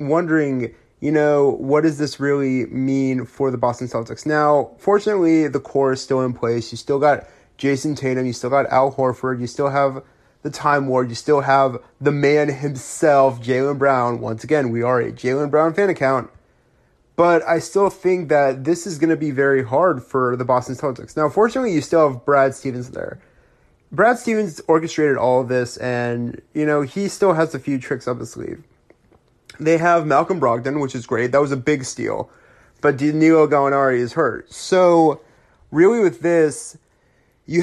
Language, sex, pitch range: English, male, 130-155 Hz